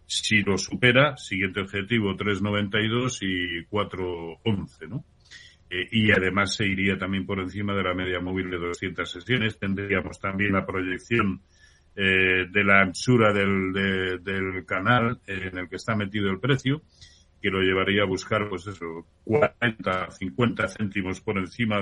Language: Spanish